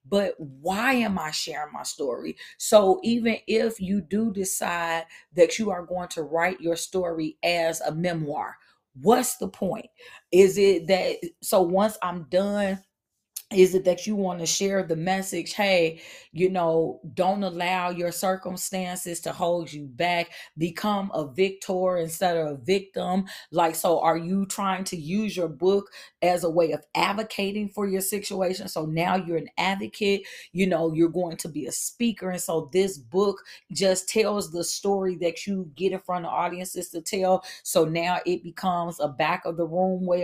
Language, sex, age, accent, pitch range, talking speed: English, female, 40-59, American, 175-205 Hz, 175 wpm